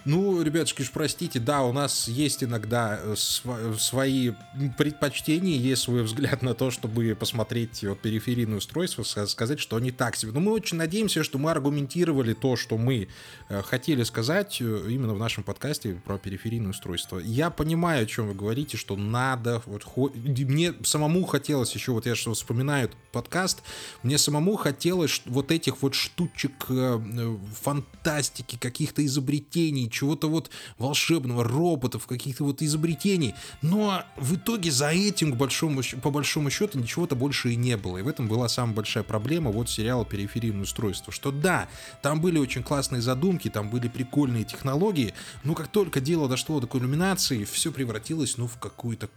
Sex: male